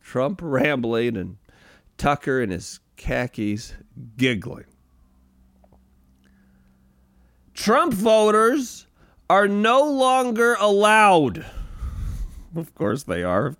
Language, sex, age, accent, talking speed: English, male, 40-59, American, 85 wpm